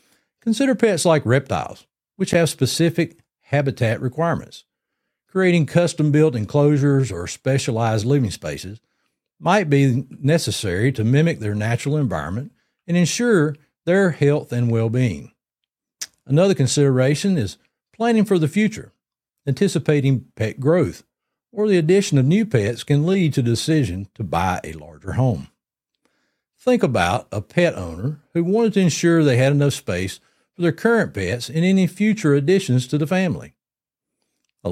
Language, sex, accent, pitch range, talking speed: English, male, American, 115-170 Hz, 140 wpm